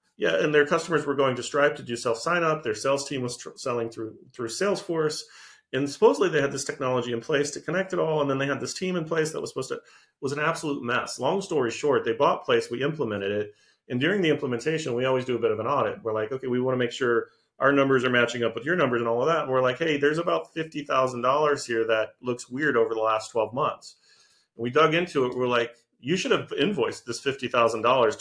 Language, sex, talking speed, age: English, male, 260 wpm, 40-59